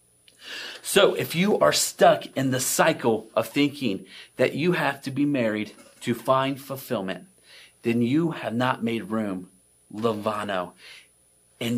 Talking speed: 140 wpm